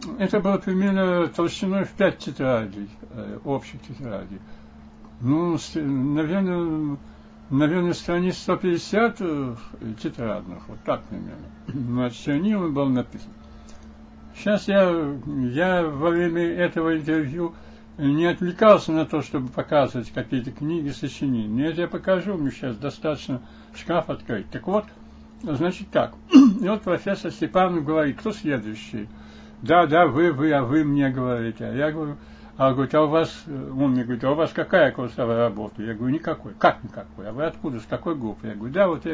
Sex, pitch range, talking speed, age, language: male, 120-170 Hz, 155 wpm, 60-79, Russian